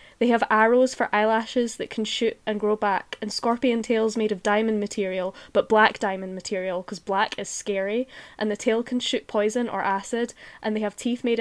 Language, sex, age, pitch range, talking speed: English, female, 10-29, 200-235 Hz, 205 wpm